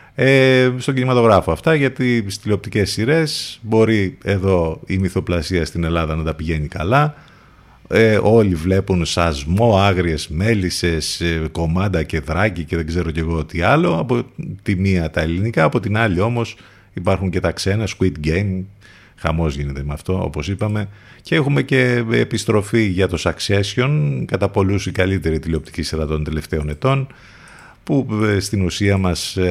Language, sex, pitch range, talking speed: Greek, male, 80-105 Hz, 145 wpm